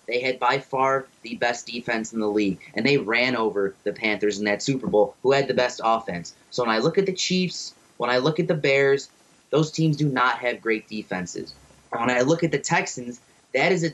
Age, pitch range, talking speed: 30-49, 115-150 Hz, 235 wpm